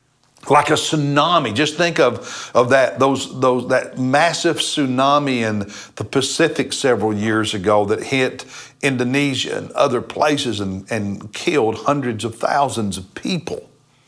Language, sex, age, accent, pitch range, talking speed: English, male, 60-79, American, 130-170 Hz, 140 wpm